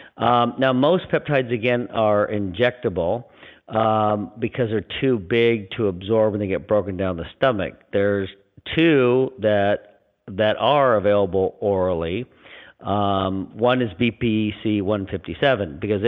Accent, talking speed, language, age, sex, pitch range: American, 125 wpm, English, 50-69, male, 100-125 Hz